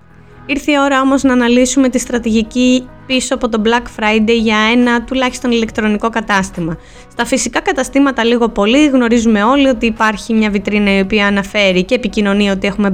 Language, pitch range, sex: Greek, 205-265 Hz, female